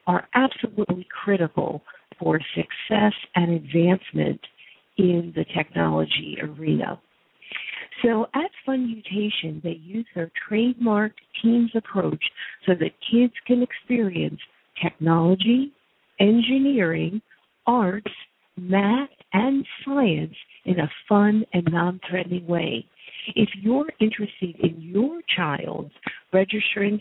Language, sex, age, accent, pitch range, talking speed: English, female, 50-69, American, 175-230 Hz, 100 wpm